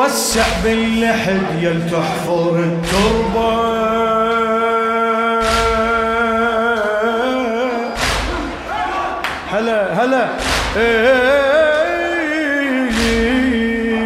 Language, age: Arabic, 30-49